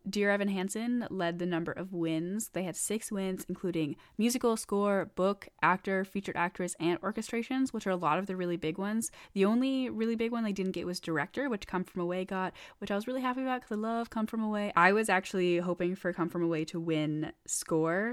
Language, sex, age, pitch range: English, female, 10-29, 170-215 Hz